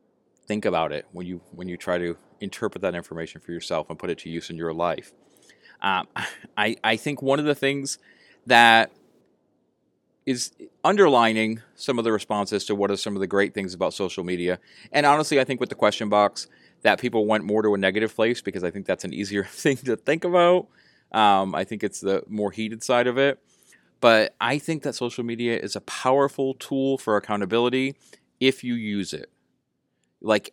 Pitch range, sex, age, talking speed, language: 100-125 Hz, male, 30-49, 200 wpm, English